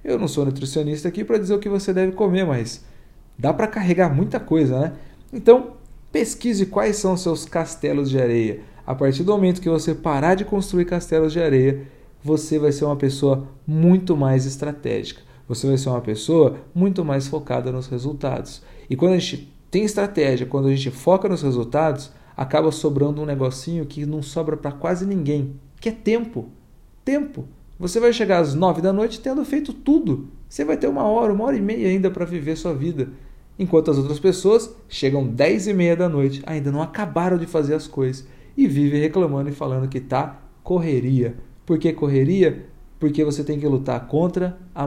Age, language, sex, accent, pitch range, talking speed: 40-59, Portuguese, male, Brazilian, 135-185 Hz, 190 wpm